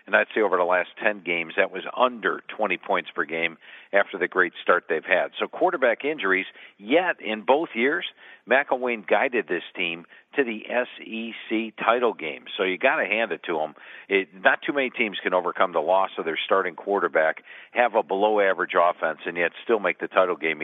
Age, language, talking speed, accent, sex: 50-69, English, 200 wpm, American, male